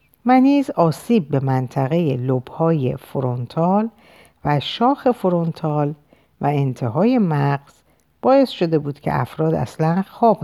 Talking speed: 110 wpm